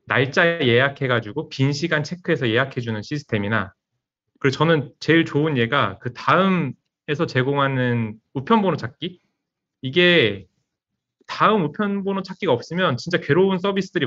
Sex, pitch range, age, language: male, 120-175 Hz, 30-49, Korean